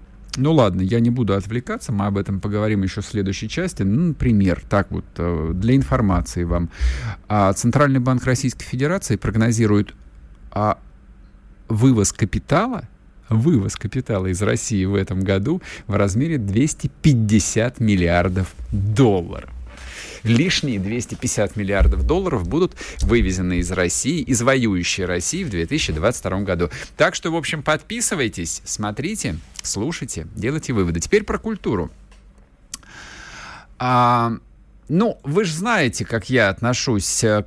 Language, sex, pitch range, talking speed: Russian, male, 90-125 Hz, 120 wpm